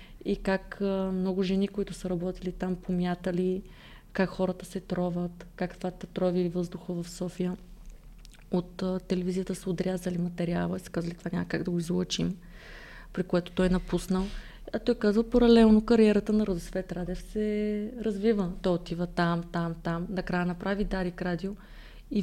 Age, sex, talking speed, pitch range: 30-49, female, 160 wpm, 180-215 Hz